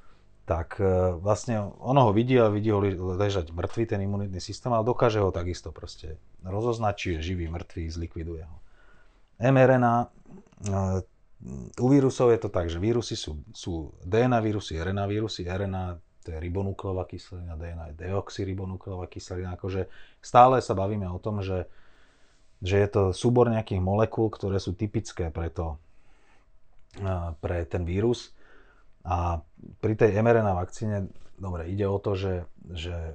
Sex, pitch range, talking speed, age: male, 90-110 Hz, 140 wpm, 30-49